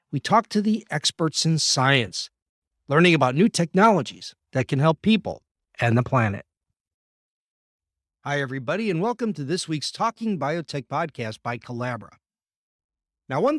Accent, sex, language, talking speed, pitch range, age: American, male, English, 140 wpm, 115-170 Hz, 50-69